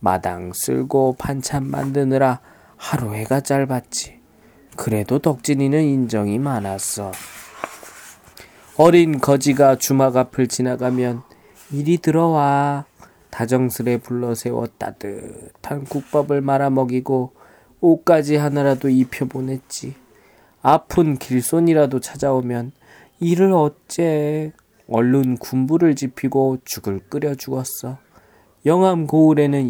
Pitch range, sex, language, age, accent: 125-145 Hz, male, Korean, 20-39, native